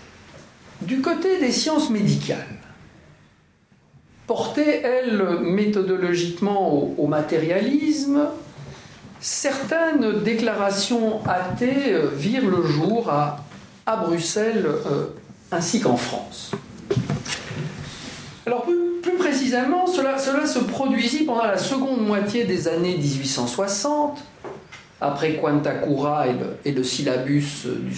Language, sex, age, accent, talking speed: French, male, 50-69, French, 100 wpm